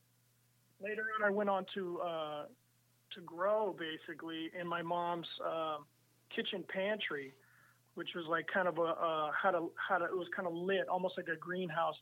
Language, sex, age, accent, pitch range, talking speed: English, male, 30-49, American, 155-180 Hz, 180 wpm